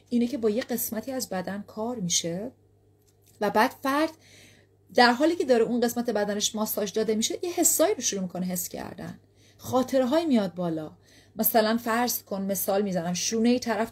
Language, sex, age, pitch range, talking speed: Persian, female, 30-49, 165-235 Hz, 170 wpm